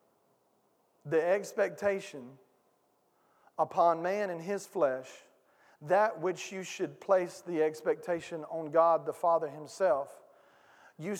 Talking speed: 105 wpm